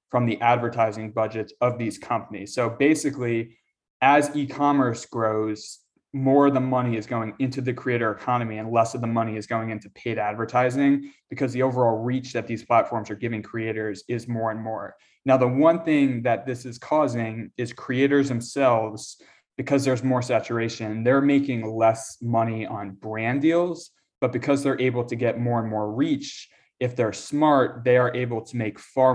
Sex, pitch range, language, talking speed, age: male, 110-130 Hz, English, 180 wpm, 20-39